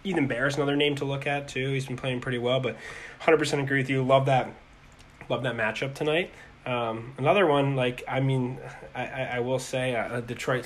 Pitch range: 120-140 Hz